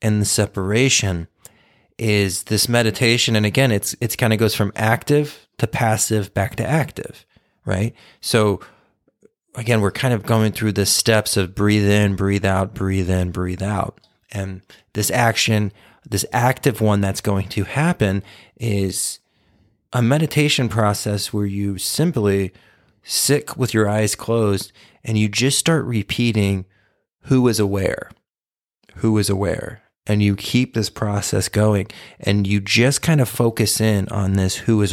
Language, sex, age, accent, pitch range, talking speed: English, male, 30-49, American, 100-120 Hz, 155 wpm